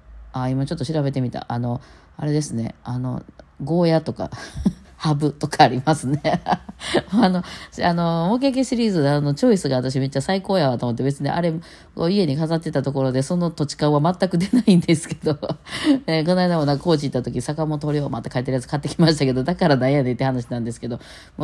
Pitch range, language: 120-155 Hz, Japanese